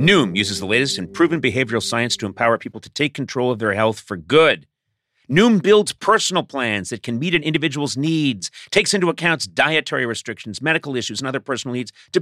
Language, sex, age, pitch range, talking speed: English, male, 40-59, 105-150 Hz, 200 wpm